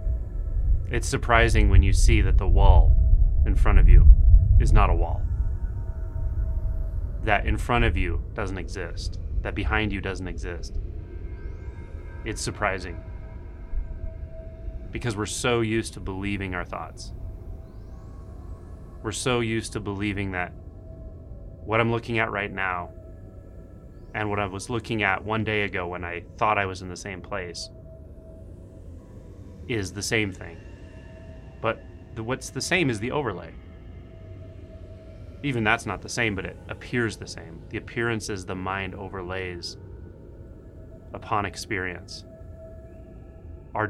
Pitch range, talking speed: 90-105 Hz, 135 wpm